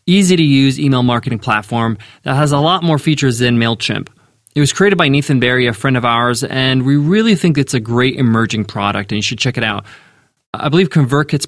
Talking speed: 220 wpm